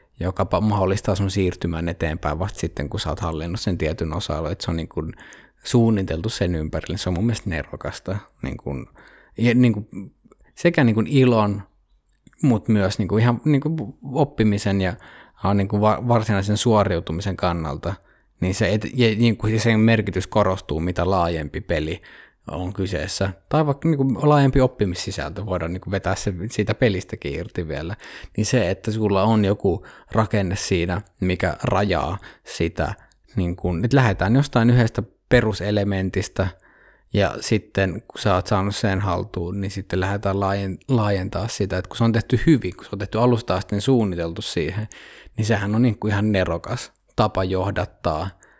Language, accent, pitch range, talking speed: Finnish, native, 90-110 Hz, 140 wpm